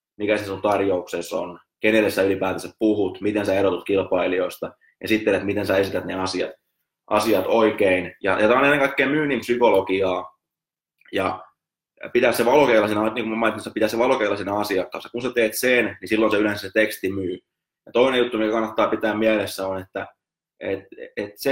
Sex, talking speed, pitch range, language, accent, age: male, 175 wpm, 100-125 Hz, Finnish, native, 20-39